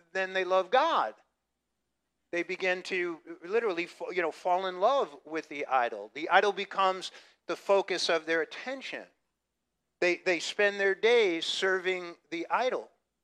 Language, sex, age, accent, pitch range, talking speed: English, male, 50-69, American, 160-205 Hz, 145 wpm